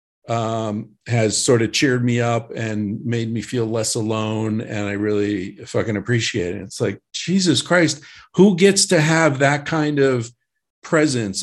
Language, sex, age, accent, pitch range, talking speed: English, male, 50-69, American, 105-130 Hz, 165 wpm